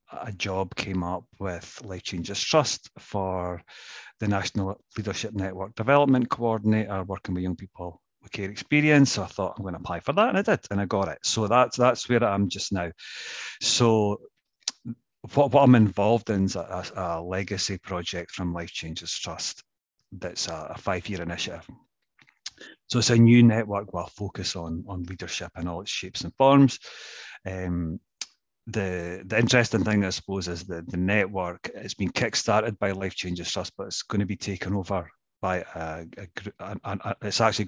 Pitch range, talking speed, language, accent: 90-105 Hz, 185 wpm, English, British